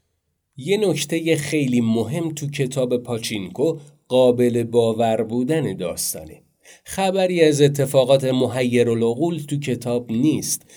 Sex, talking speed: male, 110 wpm